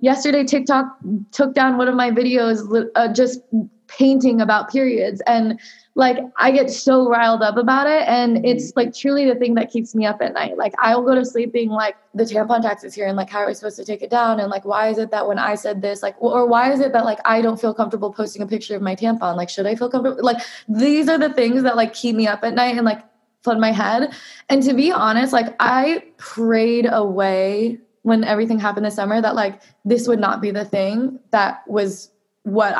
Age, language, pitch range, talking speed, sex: 20-39, English, 210-245 Hz, 235 wpm, female